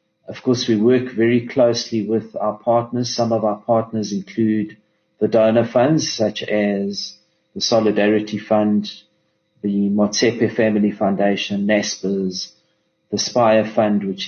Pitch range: 105-120 Hz